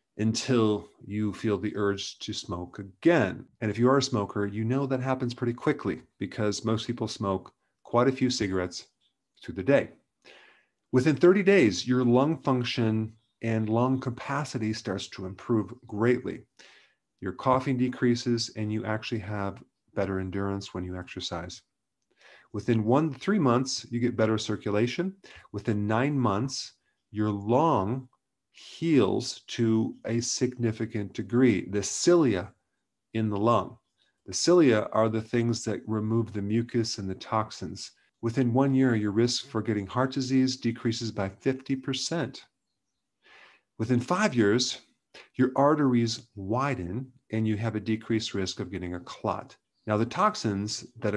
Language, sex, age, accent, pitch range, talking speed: English, male, 40-59, American, 105-125 Hz, 145 wpm